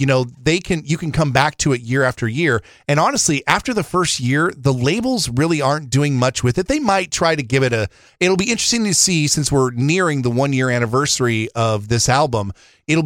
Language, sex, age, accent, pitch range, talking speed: English, male, 40-59, American, 120-155 Hz, 230 wpm